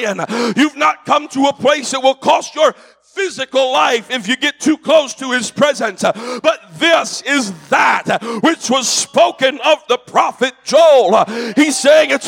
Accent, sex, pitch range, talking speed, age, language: American, male, 260-310 Hz, 165 wpm, 50-69, English